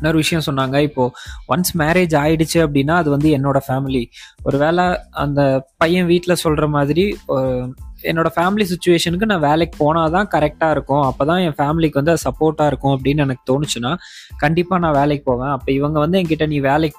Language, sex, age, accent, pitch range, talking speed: Tamil, male, 20-39, native, 140-170 Hz, 150 wpm